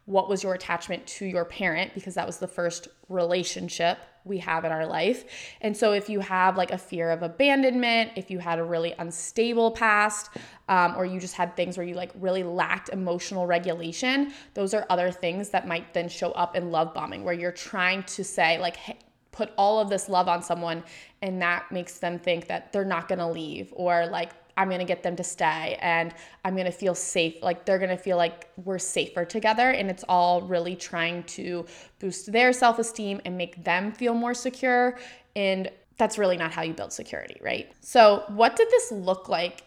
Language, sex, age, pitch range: English, female, 20-39, 175-210 Hz